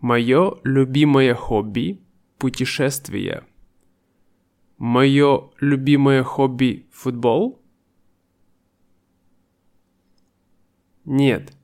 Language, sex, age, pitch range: Russian, male, 20-39, 90-145 Hz